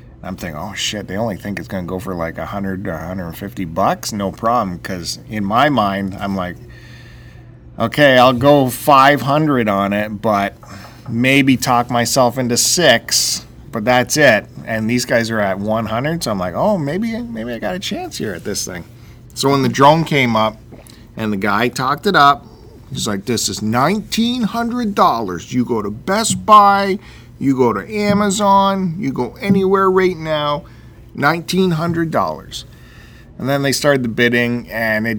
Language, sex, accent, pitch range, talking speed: English, male, American, 110-155 Hz, 170 wpm